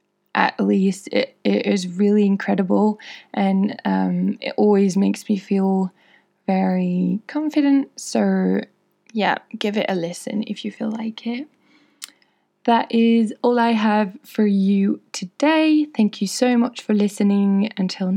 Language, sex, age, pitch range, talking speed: English, female, 20-39, 195-245 Hz, 140 wpm